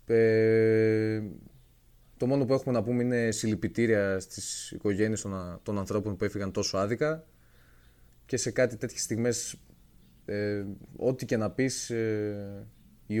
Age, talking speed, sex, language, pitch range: 20-39, 135 wpm, male, Greek, 100-120 Hz